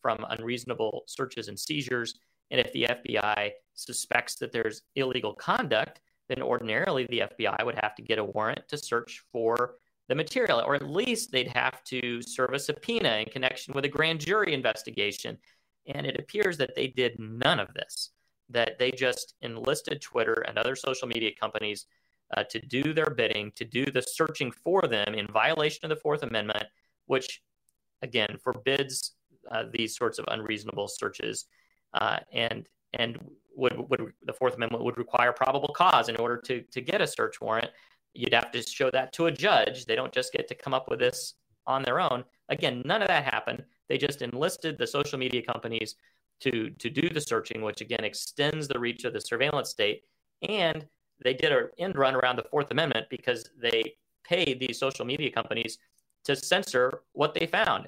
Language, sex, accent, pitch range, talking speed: English, male, American, 115-150 Hz, 185 wpm